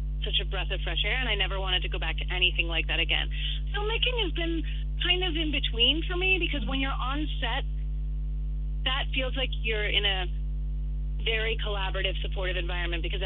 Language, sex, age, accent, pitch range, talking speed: English, female, 30-49, American, 150-190 Hz, 195 wpm